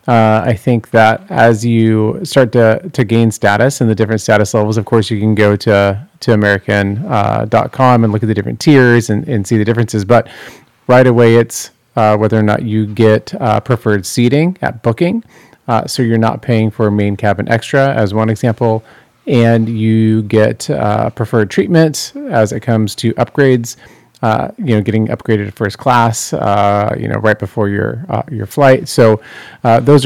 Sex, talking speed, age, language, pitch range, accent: male, 185 wpm, 30-49, English, 110-125 Hz, American